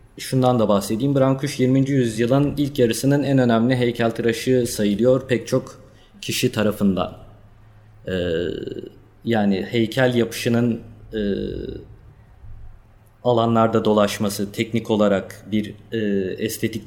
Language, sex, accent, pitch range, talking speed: Turkish, male, native, 100-120 Hz, 105 wpm